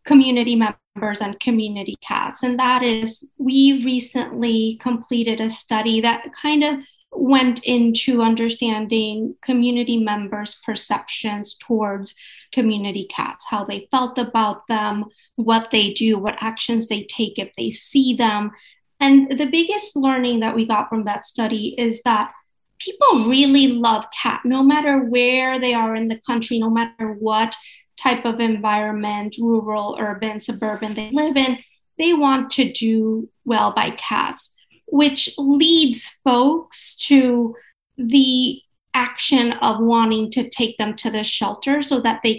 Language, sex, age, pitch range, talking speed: English, female, 30-49, 220-260 Hz, 145 wpm